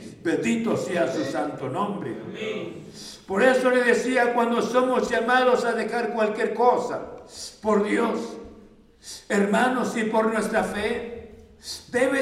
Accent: Mexican